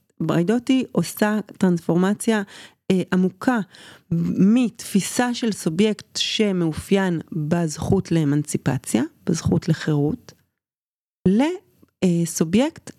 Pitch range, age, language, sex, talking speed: 165-205 Hz, 30-49, Hebrew, female, 65 wpm